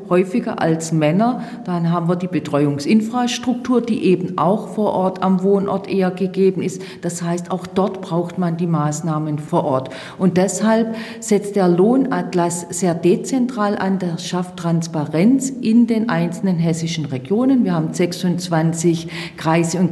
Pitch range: 165-205 Hz